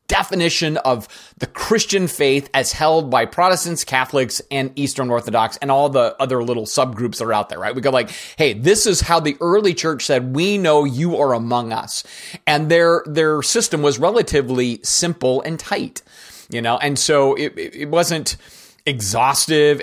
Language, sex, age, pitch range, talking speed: English, male, 30-49, 135-175 Hz, 175 wpm